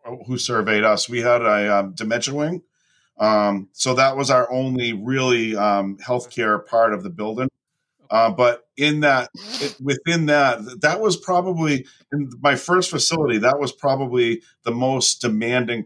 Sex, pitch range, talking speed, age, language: male, 110-145 Hz, 155 wpm, 50-69, English